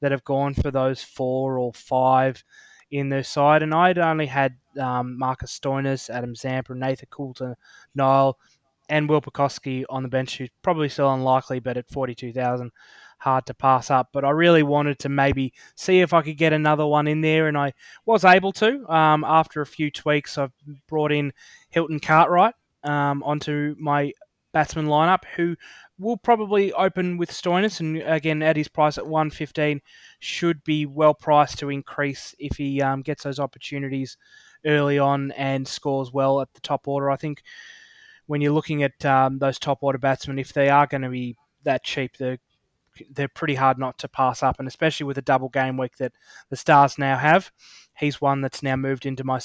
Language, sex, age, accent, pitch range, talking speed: English, male, 20-39, Australian, 135-155 Hz, 185 wpm